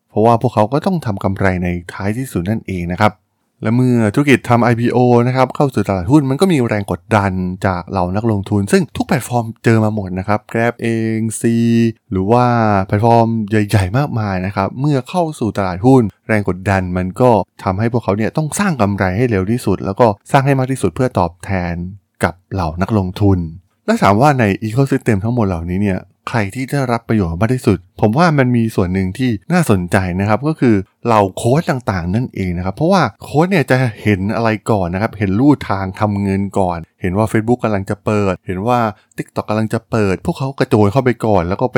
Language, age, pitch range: Thai, 20-39, 100-125 Hz